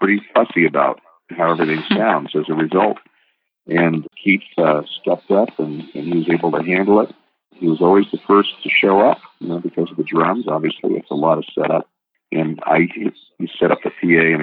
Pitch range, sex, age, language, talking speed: 80-95 Hz, male, 50-69, English, 210 wpm